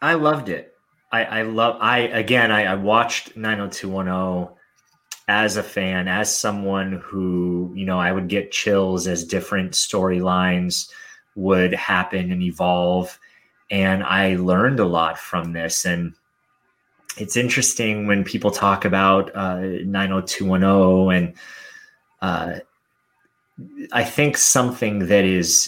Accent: American